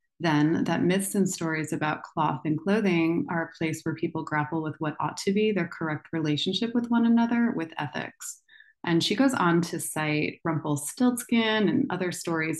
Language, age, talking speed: English, 20-39, 180 wpm